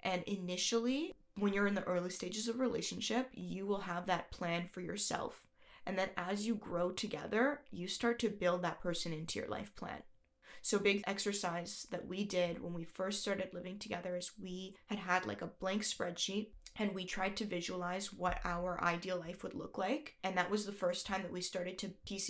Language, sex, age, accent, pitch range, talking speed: English, female, 20-39, American, 180-205 Hz, 205 wpm